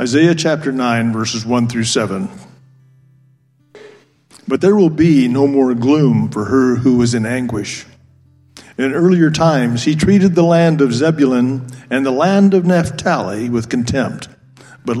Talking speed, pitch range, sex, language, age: 150 wpm, 120-160 Hz, male, English, 50-69